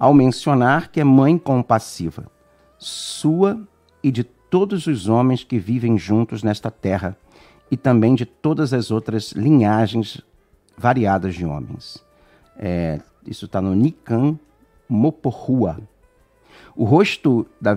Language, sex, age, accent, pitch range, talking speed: Portuguese, male, 50-69, Brazilian, 105-145 Hz, 120 wpm